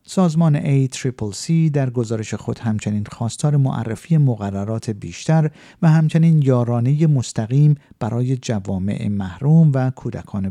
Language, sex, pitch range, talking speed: Persian, male, 105-145 Hz, 115 wpm